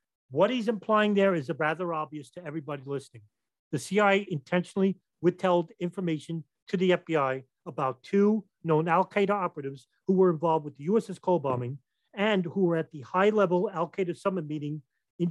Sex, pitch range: male, 150-190 Hz